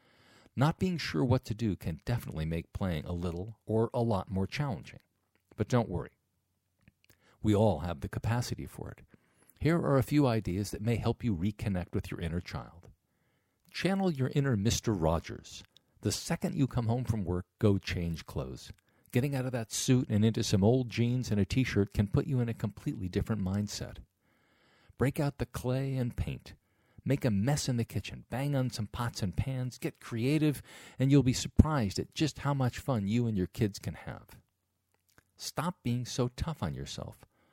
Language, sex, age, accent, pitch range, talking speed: English, male, 50-69, American, 100-130 Hz, 190 wpm